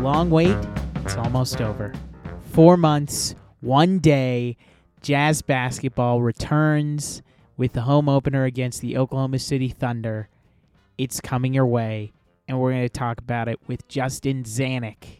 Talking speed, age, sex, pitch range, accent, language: 140 wpm, 30-49, male, 120-150 Hz, American, English